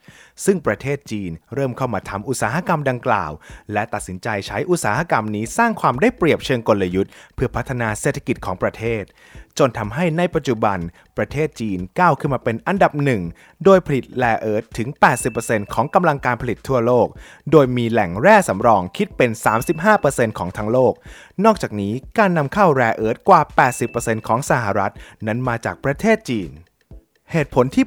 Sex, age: male, 20-39